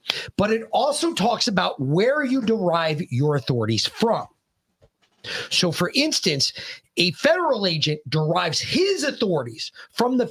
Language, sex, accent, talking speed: English, male, American, 130 wpm